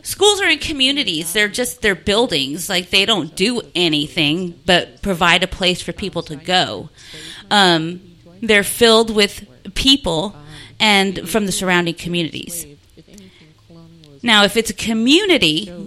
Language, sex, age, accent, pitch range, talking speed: English, female, 30-49, American, 170-230 Hz, 135 wpm